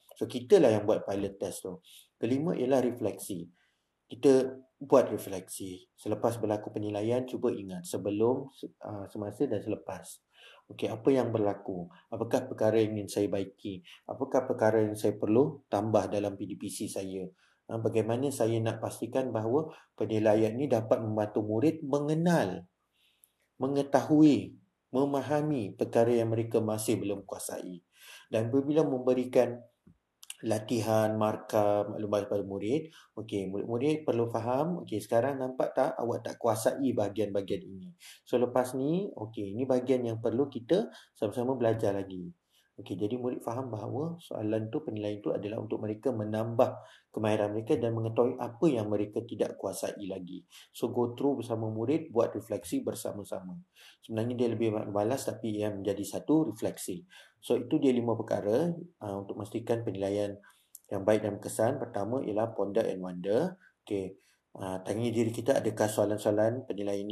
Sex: male